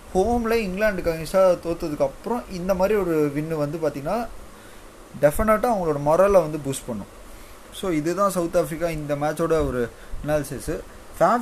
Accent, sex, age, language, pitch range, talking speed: native, male, 20-39, Tamil, 140-180 Hz, 125 wpm